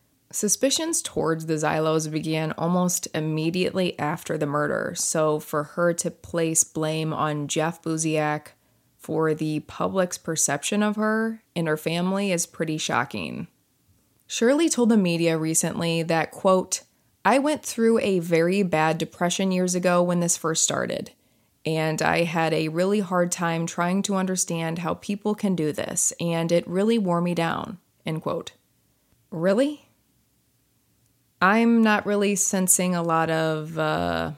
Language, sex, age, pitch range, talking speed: English, female, 20-39, 160-190 Hz, 145 wpm